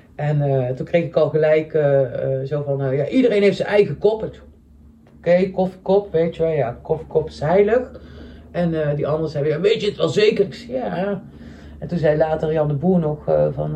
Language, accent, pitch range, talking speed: Dutch, Dutch, 145-190 Hz, 215 wpm